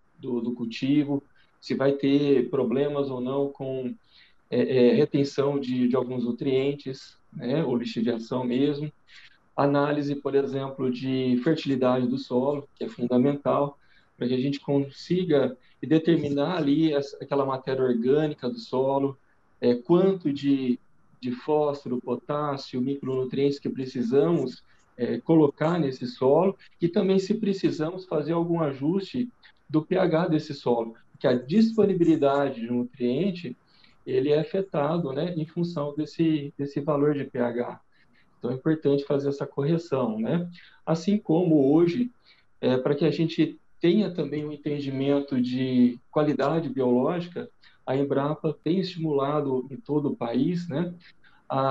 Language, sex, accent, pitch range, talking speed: Portuguese, male, Brazilian, 130-160 Hz, 135 wpm